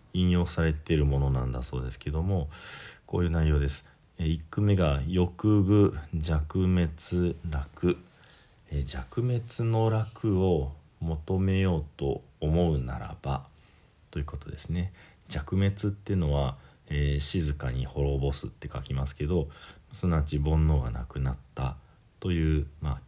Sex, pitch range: male, 70-90 Hz